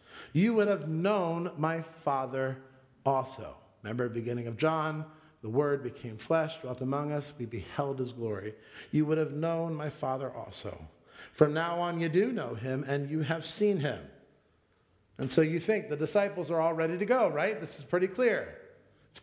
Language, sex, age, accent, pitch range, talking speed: English, male, 40-59, American, 125-165 Hz, 180 wpm